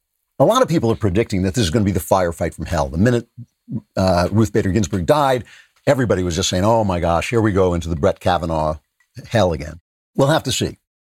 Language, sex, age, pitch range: English, male, 60-79, 90-120 Hz